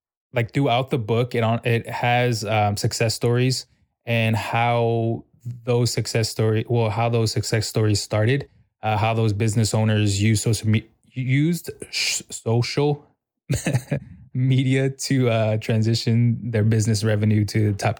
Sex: male